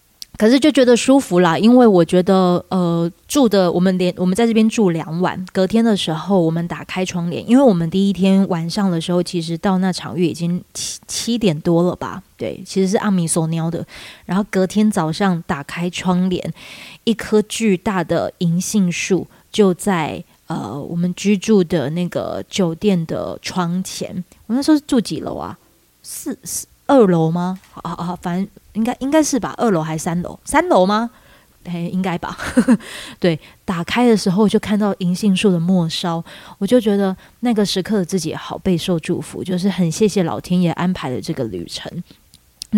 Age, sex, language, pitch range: 20-39, female, Chinese, 175-210 Hz